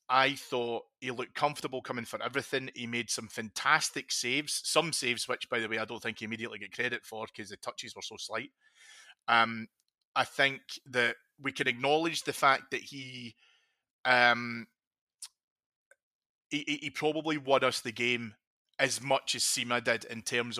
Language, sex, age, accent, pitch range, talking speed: English, male, 30-49, British, 115-135 Hz, 170 wpm